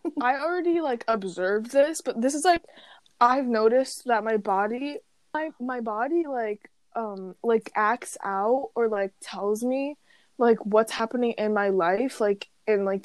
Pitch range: 195-230 Hz